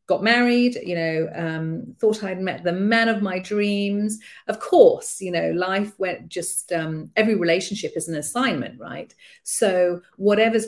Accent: British